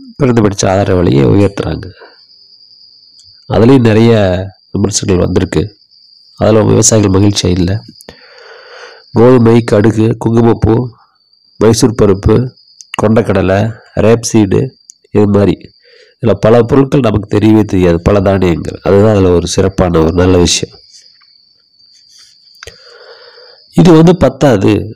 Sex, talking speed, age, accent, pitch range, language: male, 95 wpm, 50-69, native, 95-125 Hz, Tamil